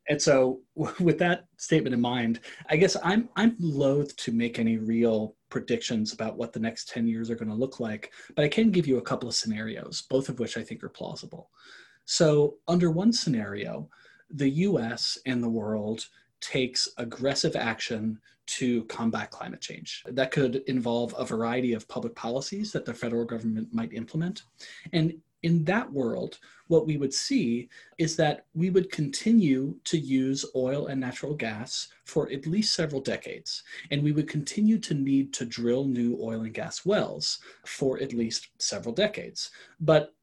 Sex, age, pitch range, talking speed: male, 30-49, 120-165 Hz, 175 wpm